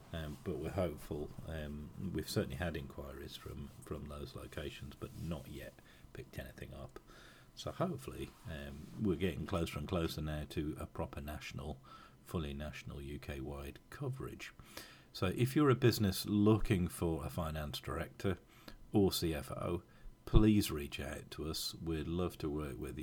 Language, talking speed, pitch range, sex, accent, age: English, 150 wpm, 70-90 Hz, male, British, 40-59